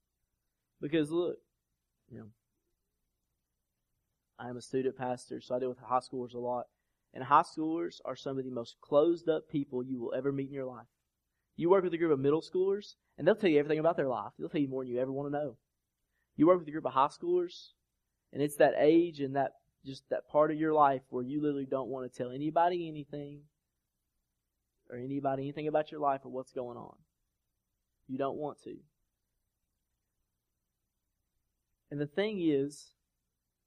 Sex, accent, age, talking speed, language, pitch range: male, American, 20-39, 195 wpm, English, 110-150 Hz